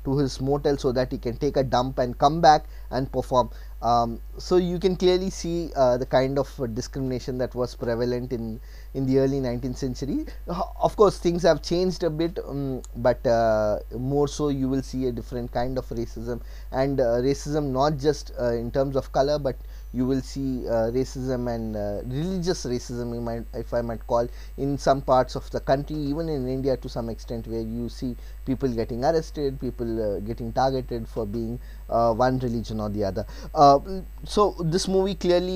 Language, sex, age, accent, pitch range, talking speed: Telugu, male, 20-39, native, 120-145 Hz, 195 wpm